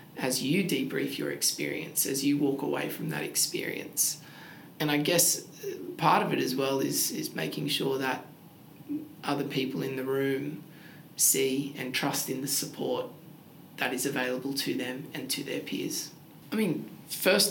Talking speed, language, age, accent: 165 wpm, English, 20-39, Australian